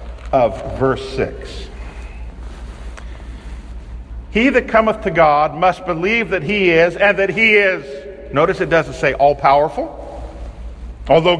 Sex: male